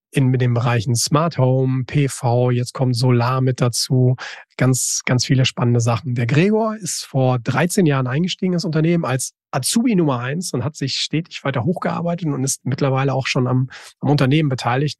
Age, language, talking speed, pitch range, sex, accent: 40-59, German, 175 wpm, 130-155 Hz, male, German